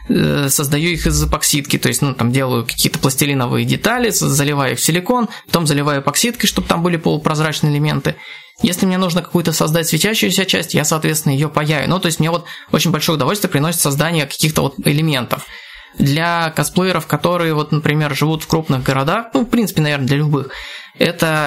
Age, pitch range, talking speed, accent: 20-39, 140-175 Hz, 180 wpm, native